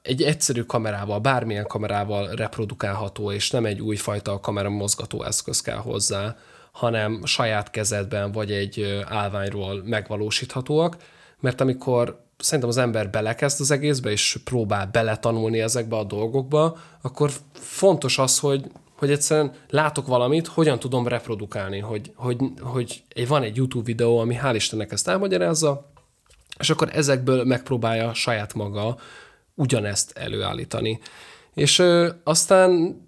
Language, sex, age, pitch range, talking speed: Hungarian, male, 20-39, 110-140 Hz, 125 wpm